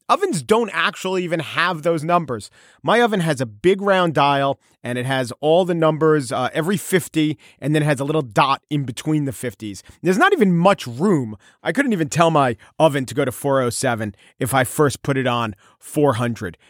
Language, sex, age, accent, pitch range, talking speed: English, male, 40-59, American, 135-190 Hz, 200 wpm